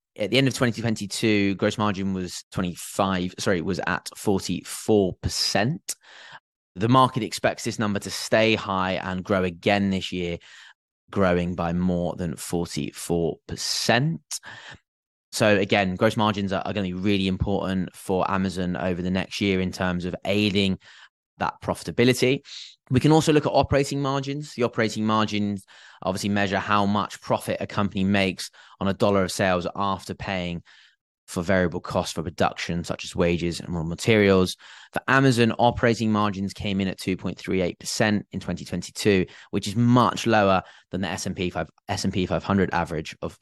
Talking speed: 165 wpm